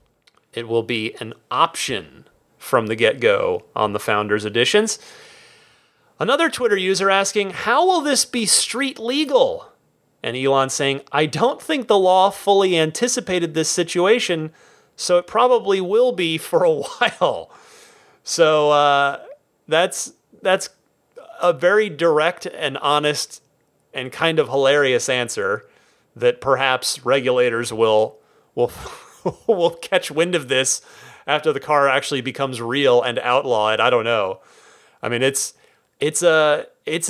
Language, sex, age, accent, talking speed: English, male, 30-49, American, 135 wpm